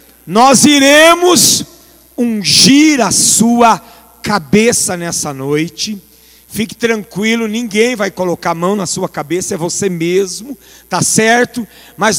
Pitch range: 200-260 Hz